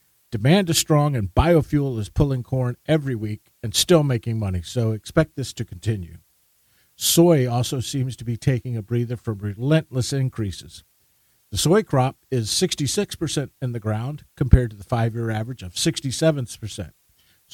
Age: 50-69